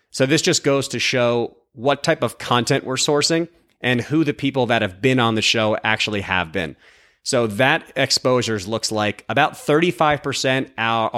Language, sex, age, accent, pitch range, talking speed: English, male, 30-49, American, 110-135 Hz, 170 wpm